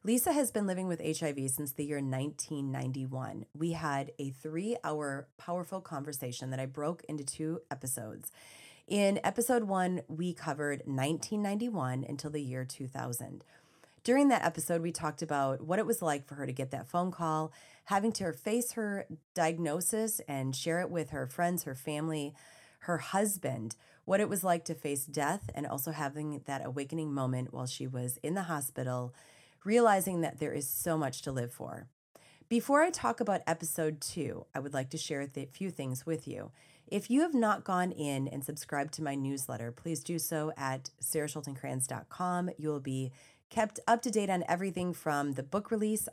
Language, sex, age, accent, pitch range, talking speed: English, female, 30-49, American, 135-180 Hz, 180 wpm